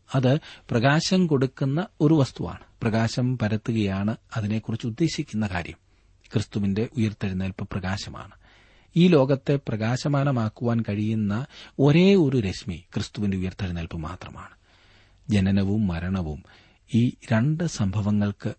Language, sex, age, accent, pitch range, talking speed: Malayalam, male, 40-59, native, 95-120 Hz, 90 wpm